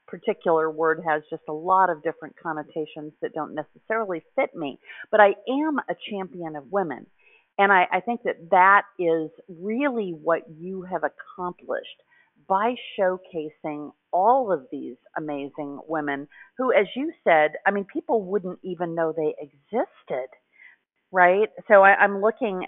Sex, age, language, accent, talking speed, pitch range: female, 40-59, English, American, 150 wpm, 160-210 Hz